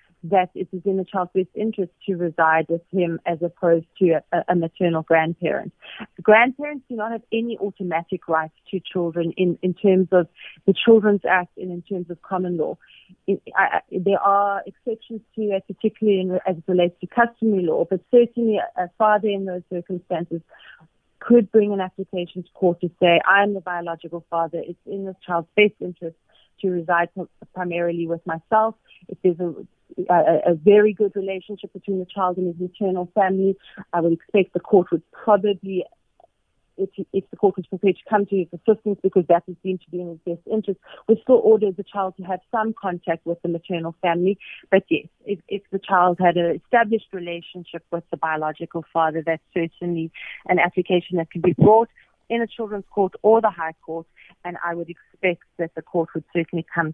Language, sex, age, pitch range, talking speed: English, female, 30-49, 170-200 Hz, 190 wpm